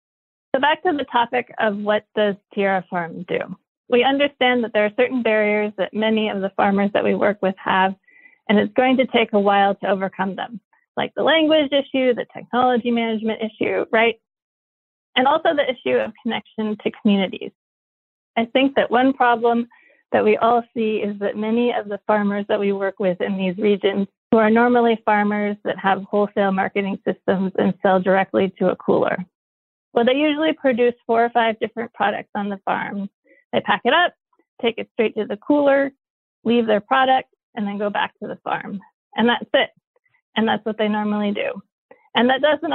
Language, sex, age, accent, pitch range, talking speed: English, female, 30-49, American, 205-245 Hz, 190 wpm